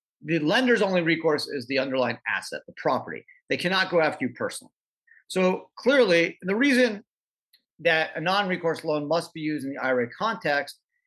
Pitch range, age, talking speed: 145-205 Hz, 40-59, 180 wpm